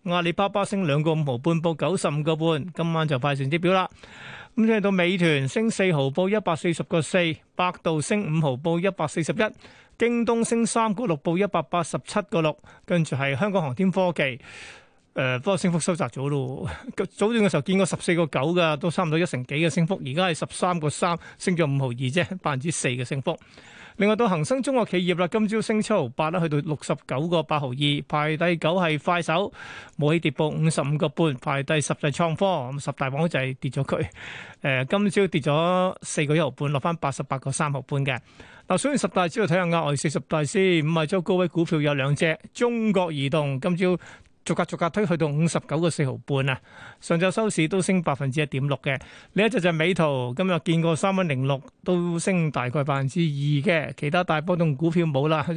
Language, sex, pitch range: Chinese, male, 150-185 Hz